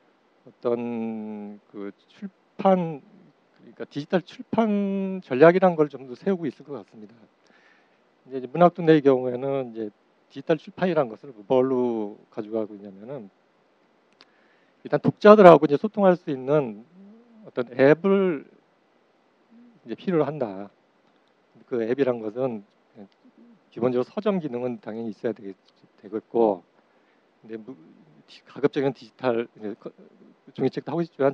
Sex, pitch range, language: male, 115-160 Hz, Korean